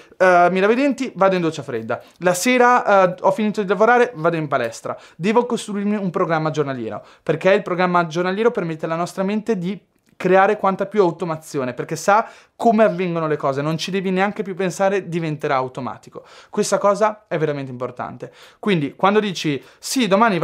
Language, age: Italian, 20-39